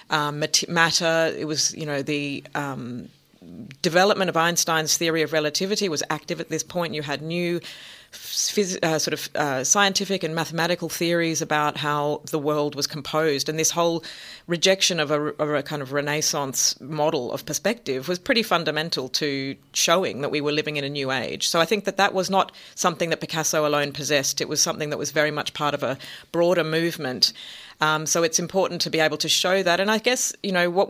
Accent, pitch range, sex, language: Australian, 150-175 Hz, female, English